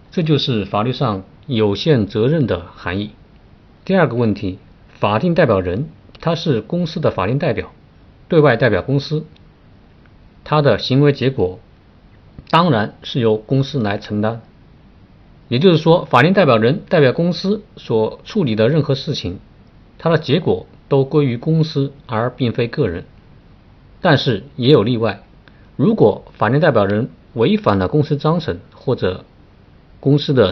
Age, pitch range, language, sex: 50-69, 105-145 Hz, Chinese, male